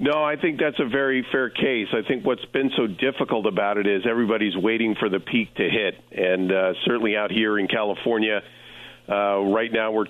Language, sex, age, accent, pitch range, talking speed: English, male, 50-69, American, 95-110 Hz, 210 wpm